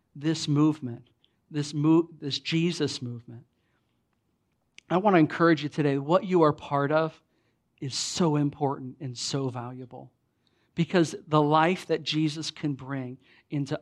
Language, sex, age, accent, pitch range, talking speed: English, male, 50-69, American, 135-175 Hz, 140 wpm